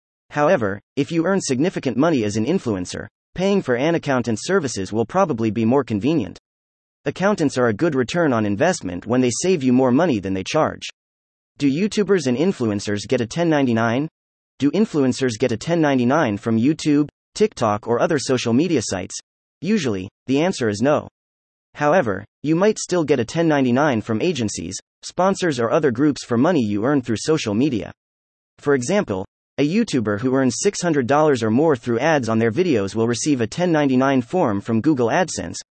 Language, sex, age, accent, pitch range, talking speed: English, male, 30-49, American, 110-155 Hz, 170 wpm